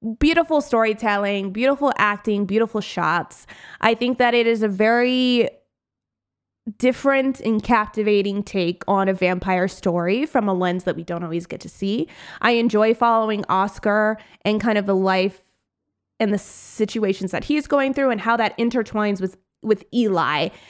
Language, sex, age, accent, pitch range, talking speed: English, female, 20-39, American, 185-235 Hz, 155 wpm